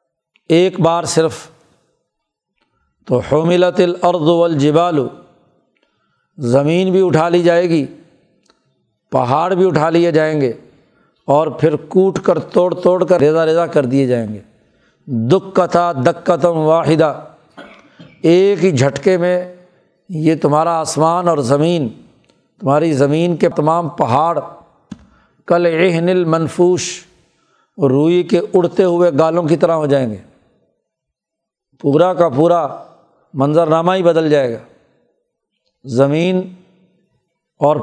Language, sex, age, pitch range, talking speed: Urdu, male, 60-79, 155-180 Hz, 115 wpm